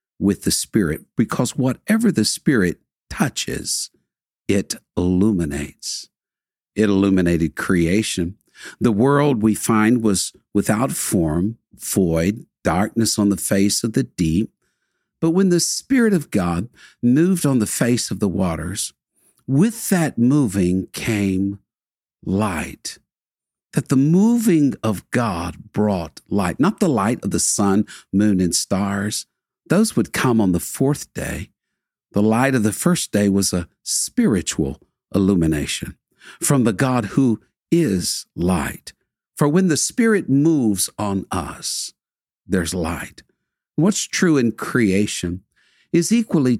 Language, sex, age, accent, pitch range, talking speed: English, male, 60-79, American, 95-135 Hz, 130 wpm